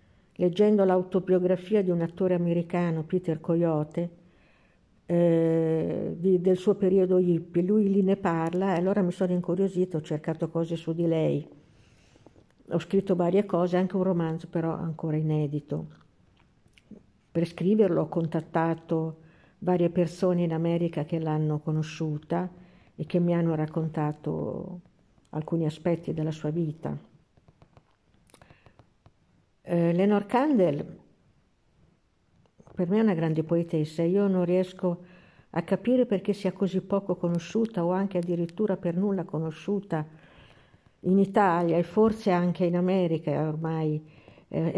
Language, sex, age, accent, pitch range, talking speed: Italian, female, 60-79, native, 165-190 Hz, 125 wpm